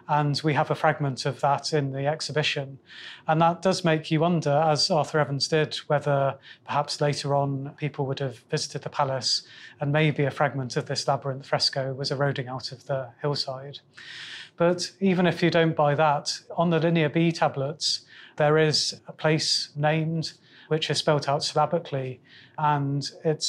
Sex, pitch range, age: male, 140-155 Hz, 30-49